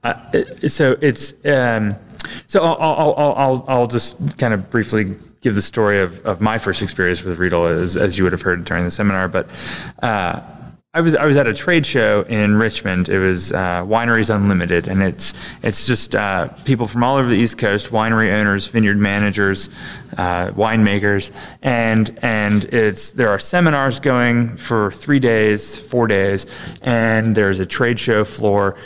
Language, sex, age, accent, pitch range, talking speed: English, male, 20-39, American, 100-120 Hz, 175 wpm